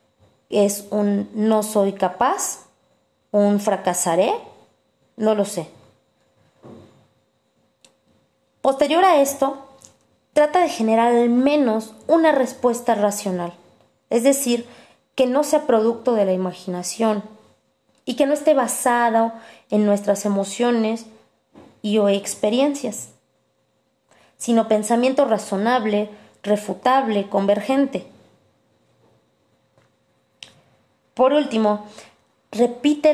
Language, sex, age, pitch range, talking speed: Spanish, female, 20-39, 205-265 Hz, 90 wpm